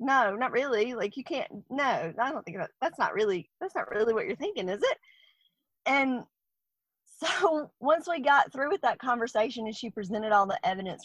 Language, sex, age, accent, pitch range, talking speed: English, female, 20-39, American, 195-255 Hz, 200 wpm